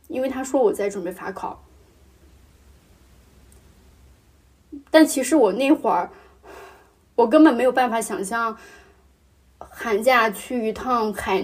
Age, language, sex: 20-39, Chinese, female